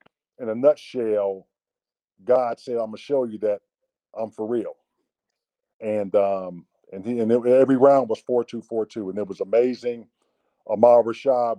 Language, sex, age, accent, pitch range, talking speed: English, male, 50-69, American, 105-130 Hz, 175 wpm